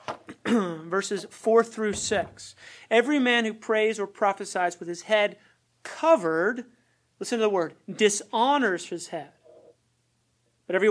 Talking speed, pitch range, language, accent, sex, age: 125 wpm, 175-220 Hz, English, American, male, 30-49